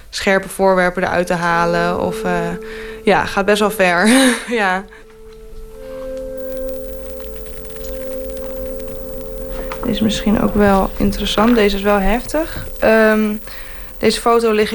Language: Dutch